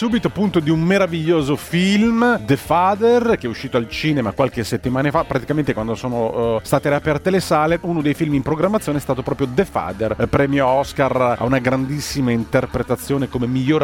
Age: 30-49